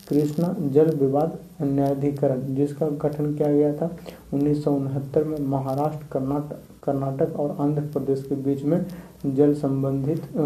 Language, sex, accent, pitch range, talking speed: Hindi, male, native, 140-155 Hz, 125 wpm